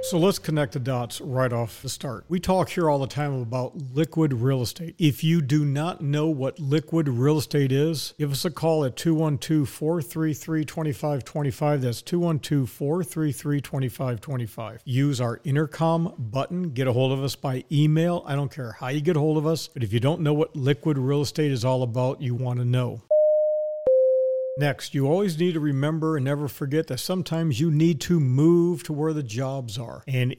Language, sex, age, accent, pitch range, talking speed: English, male, 50-69, American, 130-160 Hz, 195 wpm